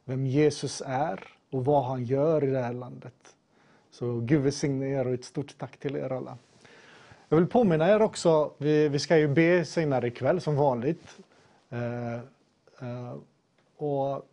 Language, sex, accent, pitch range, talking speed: Swedish, male, native, 130-160 Hz, 150 wpm